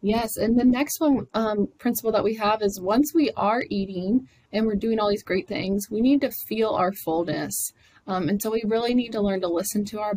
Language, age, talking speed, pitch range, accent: English, 20-39, 235 wpm, 180-215 Hz, American